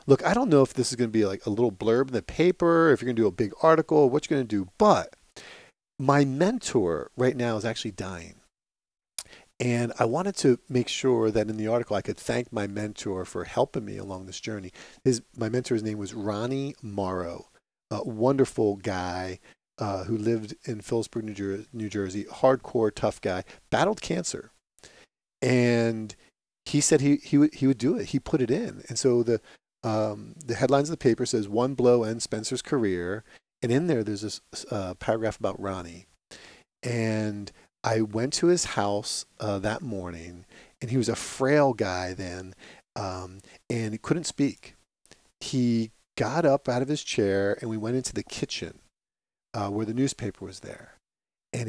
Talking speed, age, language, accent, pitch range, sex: 190 wpm, 40-59, English, American, 100-130 Hz, male